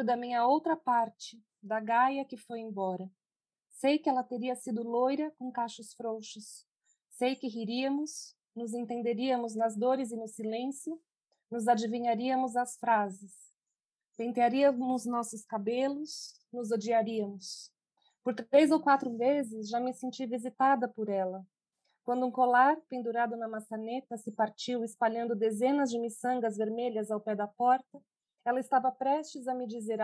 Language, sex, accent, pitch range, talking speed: Portuguese, female, Brazilian, 220-250 Hz, 140 wpm